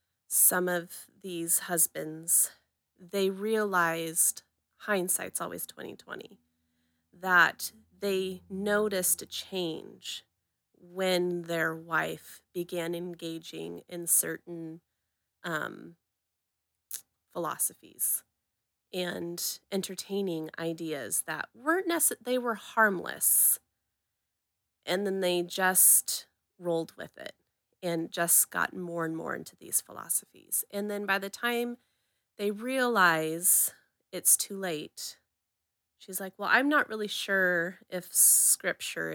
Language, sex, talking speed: English, female, 105 wpm